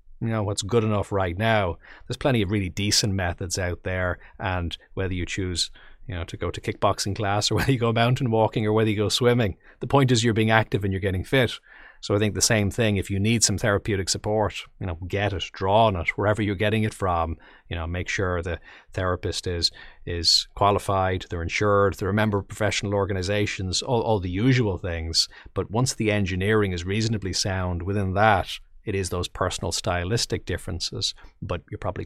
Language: English